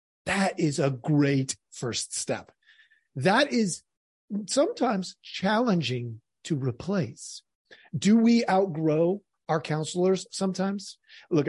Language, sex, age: English, male, 40-59